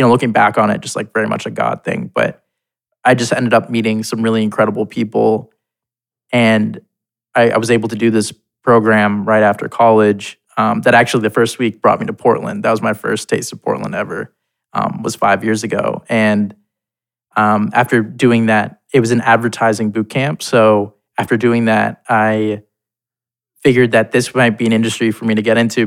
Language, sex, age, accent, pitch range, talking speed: English, male, 20-39, American, 110-120 Hz, 200 wpm